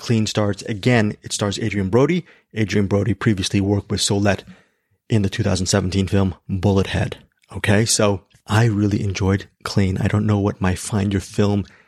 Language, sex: English, male